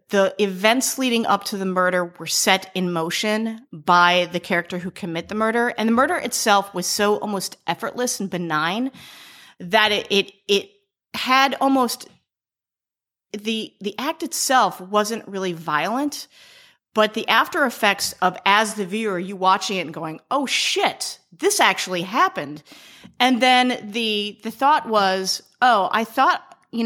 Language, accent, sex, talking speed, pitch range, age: English, American, female, 155 wpm, 185-250 Hz, 30-49